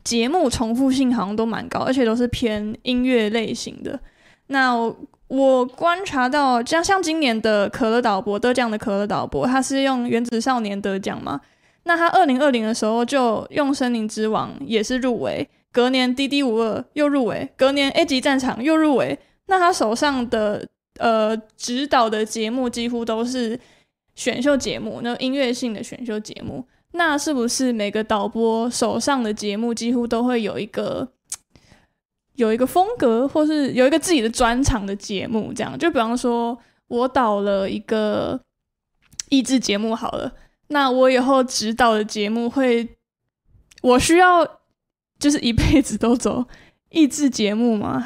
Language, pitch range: Chinese, 225-265 Hz